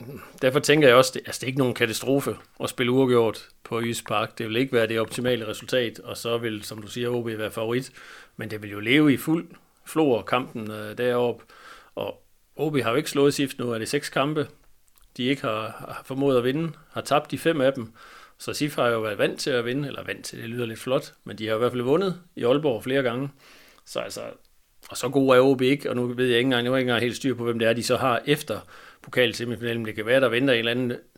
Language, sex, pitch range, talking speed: Danish, male, 115-130 Hz, 250 wpm